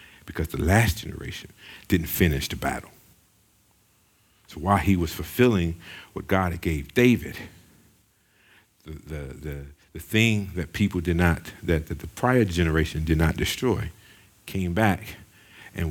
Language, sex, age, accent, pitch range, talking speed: English, male, 50-69, American, 80-105 Hz, 145 wpm